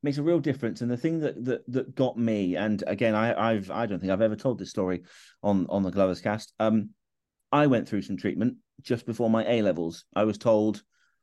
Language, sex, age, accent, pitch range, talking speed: English, male, 40-59, British, 95-120 Hz, 225 wpm